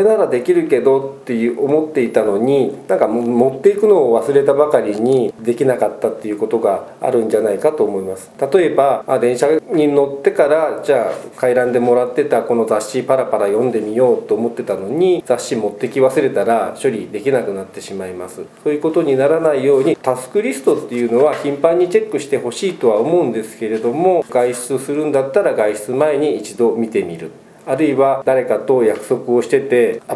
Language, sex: Japanese, male